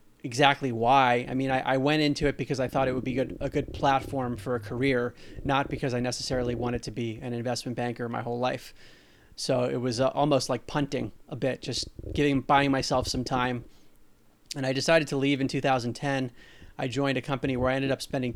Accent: American